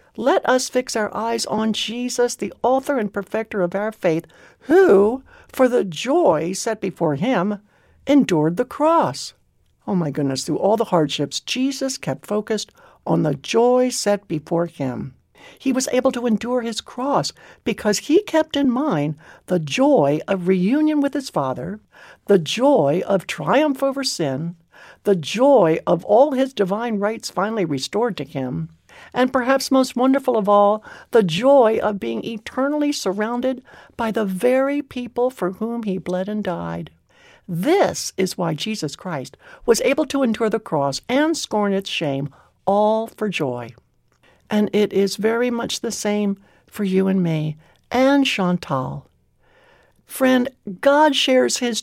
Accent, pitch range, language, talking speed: American, 180-255 Hz, English, 155 wpm